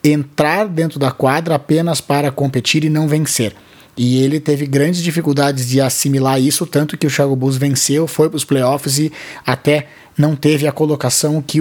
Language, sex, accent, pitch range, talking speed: Portuguese, male, Brazilian, 135-170 Hz, 180 wpm